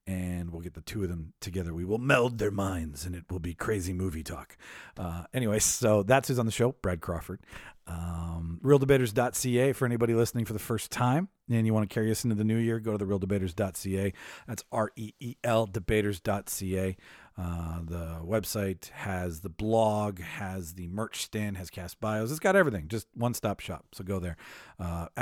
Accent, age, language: American, 40-59, English